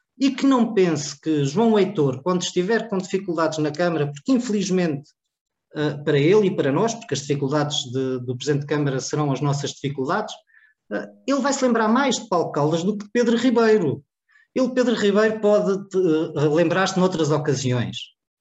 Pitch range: 135-190 Hz